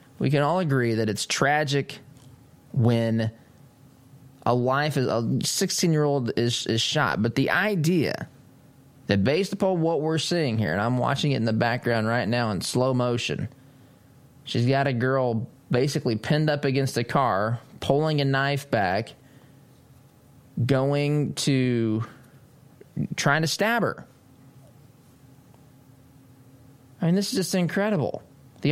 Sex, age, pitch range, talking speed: male, 20-39, 120-145 Hz, 135 wpm